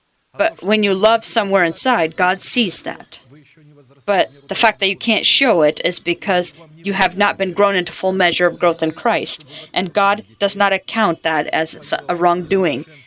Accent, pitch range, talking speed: American, 165-200 Hz, 185 wpm